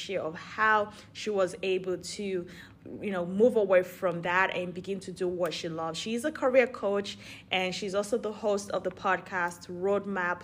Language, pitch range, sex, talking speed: English, 180-220 Hz, female, 170 wpm